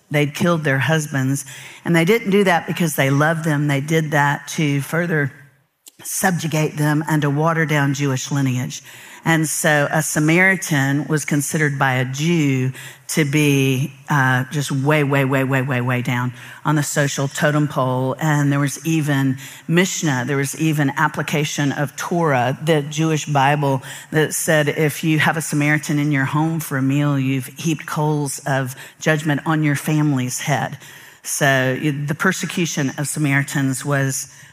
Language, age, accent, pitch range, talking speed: English, 50-69, American, 140-160 Hz, 160 wpm